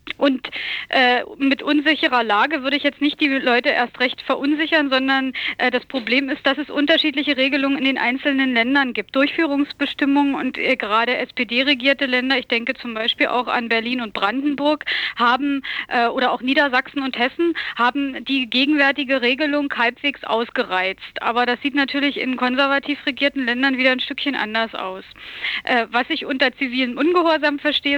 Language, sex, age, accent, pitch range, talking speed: German, female, 30-49, German, 250-290 Hz, 165 wpm